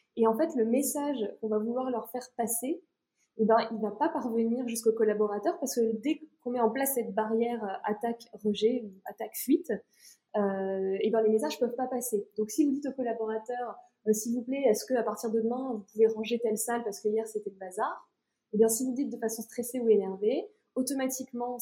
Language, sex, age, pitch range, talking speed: French, female, 20-39, 215-260 Hz, 215 wpm